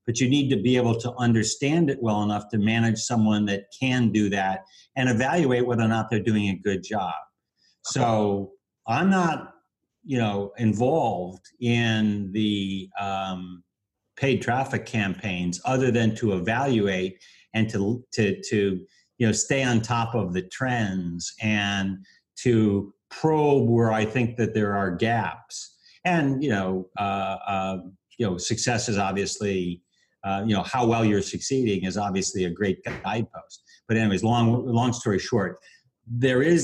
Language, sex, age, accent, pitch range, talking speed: English, male, 50-69, American, 100-125 Hz, 155 wpm